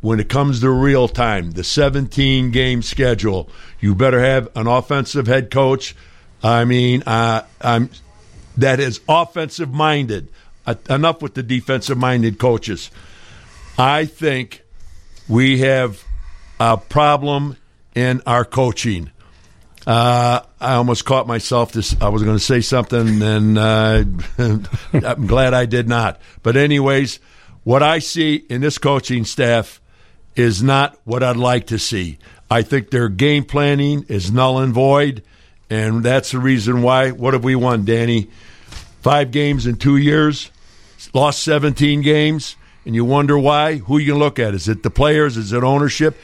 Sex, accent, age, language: male, American, 60-79, English